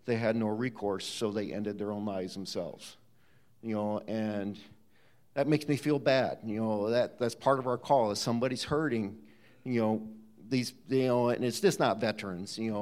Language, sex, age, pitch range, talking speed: English, male, 50-69, 105-120 Hz, 190 wpm